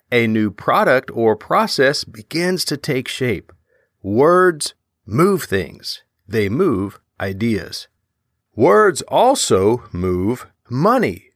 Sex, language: male, English